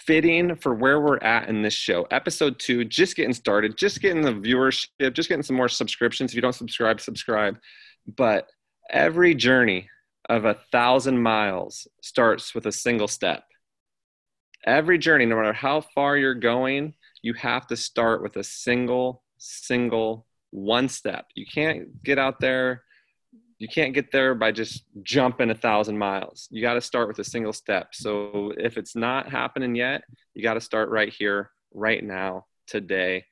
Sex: male